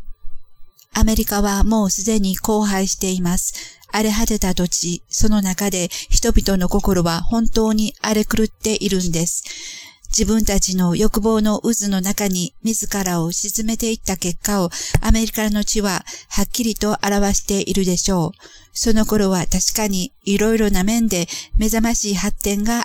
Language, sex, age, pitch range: Japanese, female, 50-69, 185-220 Hz